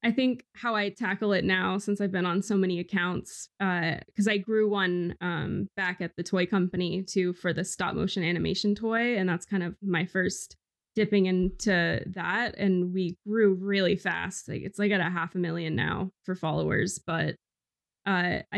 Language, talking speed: English, 190 wpm